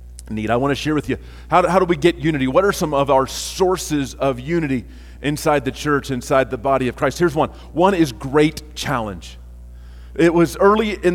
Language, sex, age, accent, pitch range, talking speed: English, male, 30-49, American, 155-185 Hz, 215 wpm